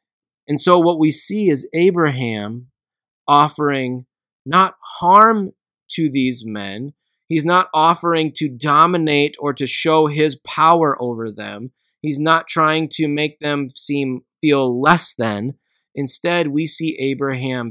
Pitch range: 135-165 Hz